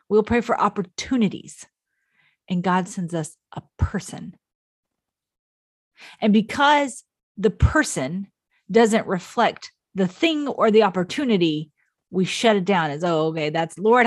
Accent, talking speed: American, 130 wpm